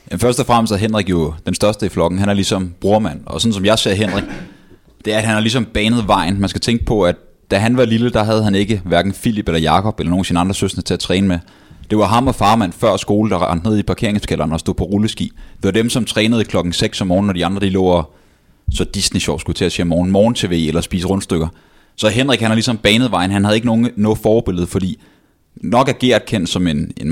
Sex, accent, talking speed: male, native, 260 wpm